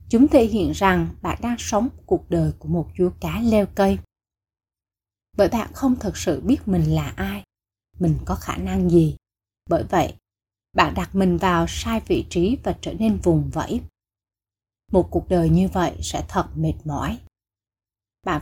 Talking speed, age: 175 wpm, 20-39